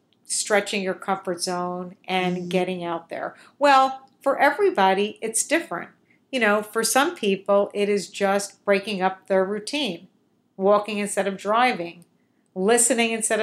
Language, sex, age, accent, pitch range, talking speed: English, female, 50-69, American, 185-210 Hz, 140 wpm